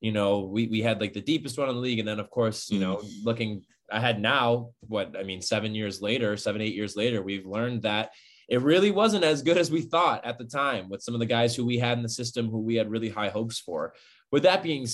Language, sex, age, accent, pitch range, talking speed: English, male, 20-39, American, 110-135 Hz, 265 wpm